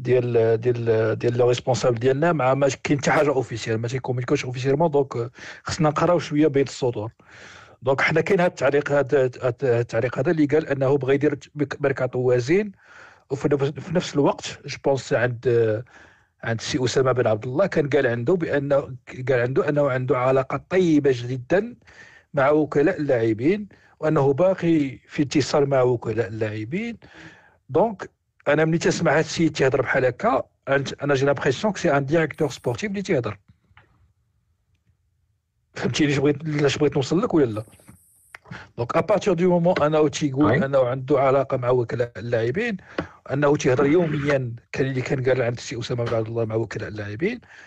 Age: 50-69